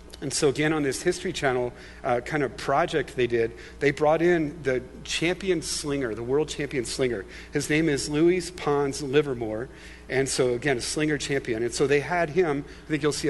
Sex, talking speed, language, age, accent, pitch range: male, 200 wpm, English, 40-59, American, 120-150 Hz